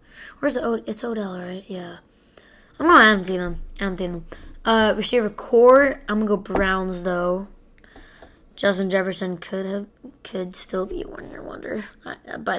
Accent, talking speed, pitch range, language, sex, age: American, 150 wpm, 185-230 Hz, English, female, 10-29